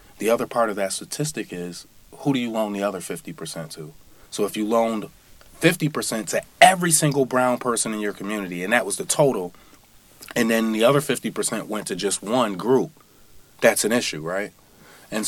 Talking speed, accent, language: 190 wpm, American, English